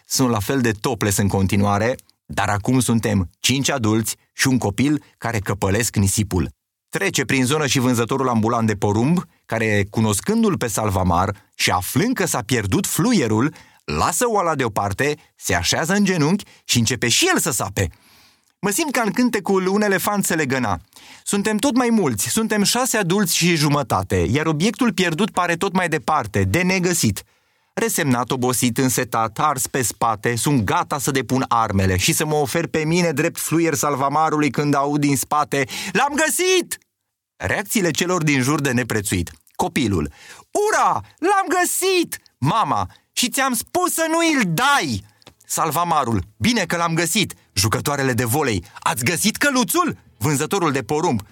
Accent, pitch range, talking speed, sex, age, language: native, 115-190 Hz, 155 wpm, male, 30-49, Romanian